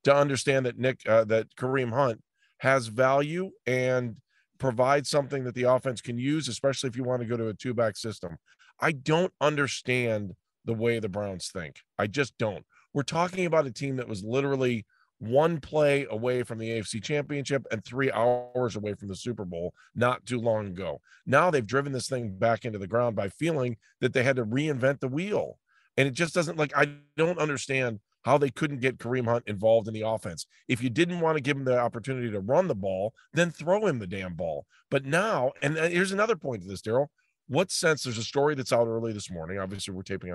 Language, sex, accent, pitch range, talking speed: English, male, American, 110-140 Hz, 215 wpm